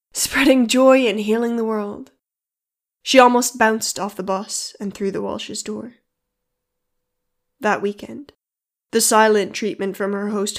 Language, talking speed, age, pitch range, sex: English, 140 wpm, 10-29, 200-230 Hz, female